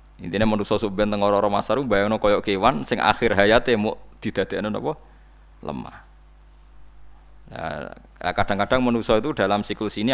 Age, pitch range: 20-39, 95-115 Hz